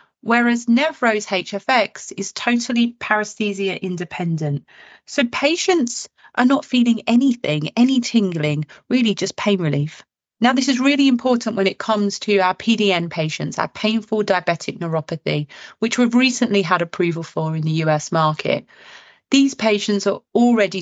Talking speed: 140 wpm